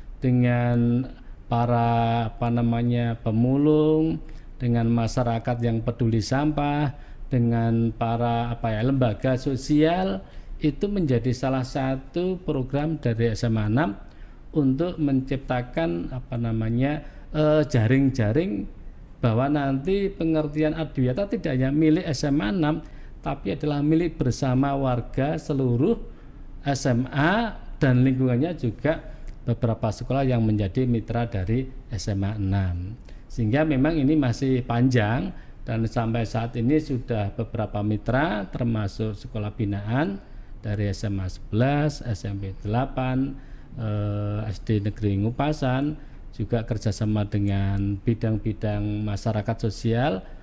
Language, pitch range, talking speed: Indonesian, 110-145 Hz, 100 wpm